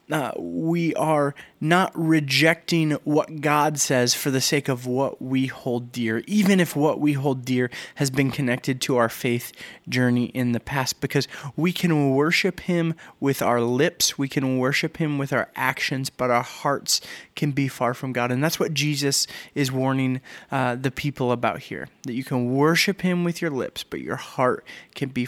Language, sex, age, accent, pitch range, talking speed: English, male, 30-49, American, 130-160 Hz, 190 wpm